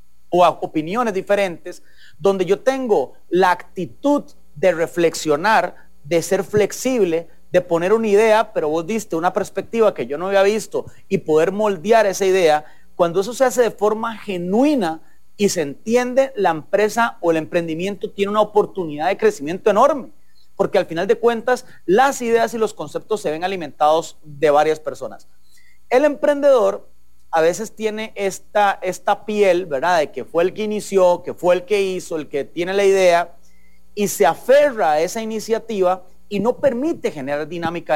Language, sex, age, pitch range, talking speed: English, male, 40-59, 165-220 Hz, 170 wpm